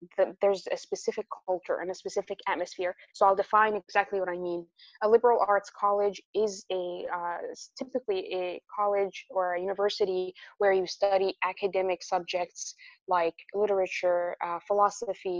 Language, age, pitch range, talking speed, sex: English, 20-39, 185-220 Hz, 150 wpm, female